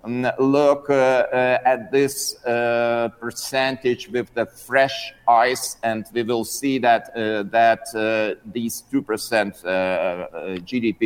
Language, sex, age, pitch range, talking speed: English, male, 50-69, 110-130 Hz, 130 wpm